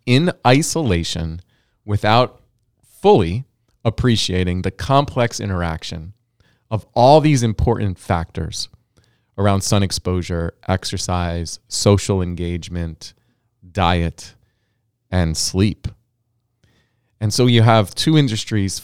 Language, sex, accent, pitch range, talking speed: English, male, American, 90-115 Hz, 90 wpm